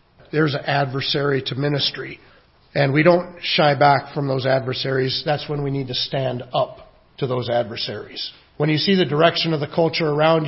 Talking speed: 185 wpm